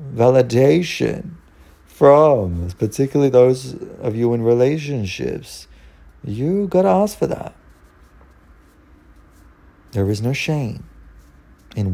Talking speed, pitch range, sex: 90 wpm, 75-125 Hz, male